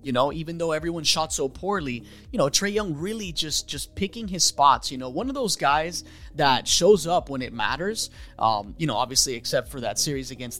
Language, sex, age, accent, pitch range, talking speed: English, male, 20-39, American, 140-185 Hz, 220 wpm